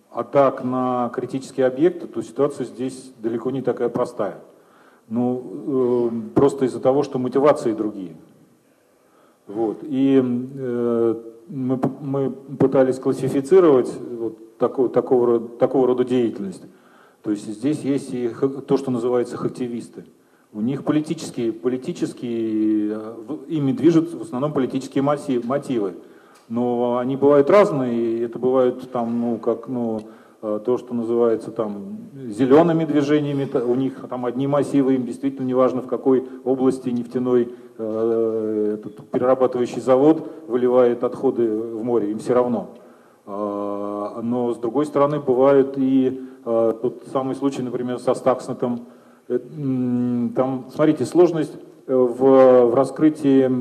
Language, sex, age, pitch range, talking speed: Russian, male, 40-59, 120-135 Hz, 120 wpm